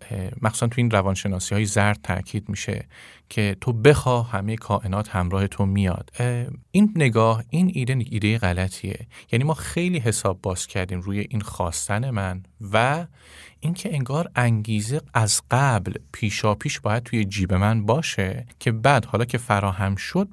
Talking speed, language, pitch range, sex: 155 wpm, Persian, 100-135 Hz, male